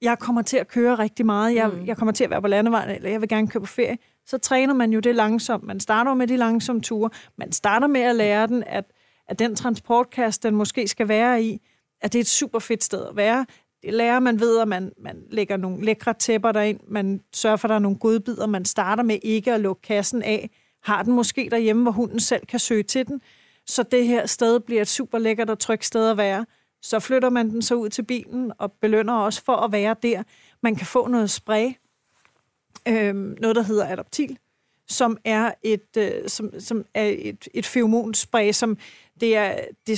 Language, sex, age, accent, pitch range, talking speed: Danish, female, 30-49, native, 215-235 Hz, 220 wpm